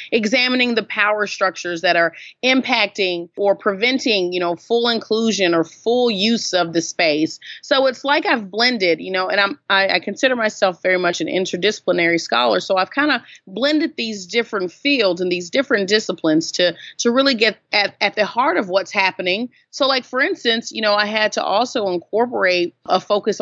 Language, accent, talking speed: English, American, 190 wpm